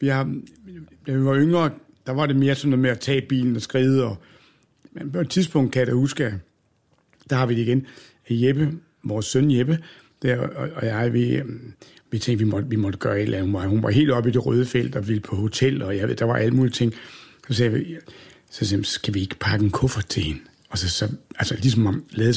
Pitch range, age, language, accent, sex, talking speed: 115-150 Hz, 60-79, Danish, native, male, 235 wpm